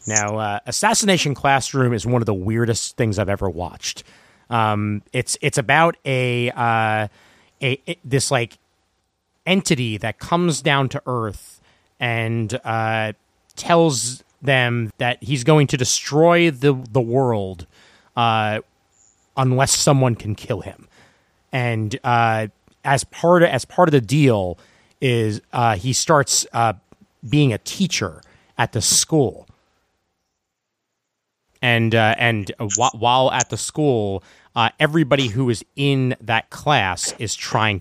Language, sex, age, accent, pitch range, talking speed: English, male, 30-49, American, 105-135 Hz, 135 wpm